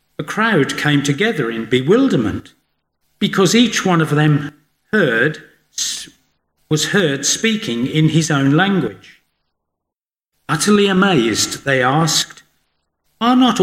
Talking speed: 110 wpm